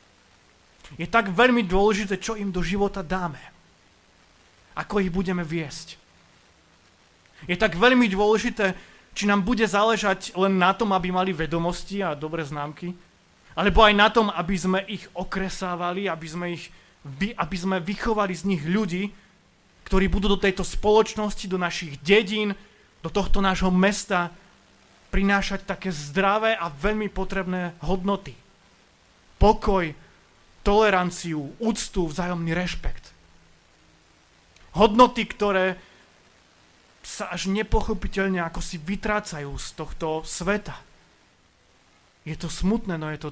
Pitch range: 165-205 Hz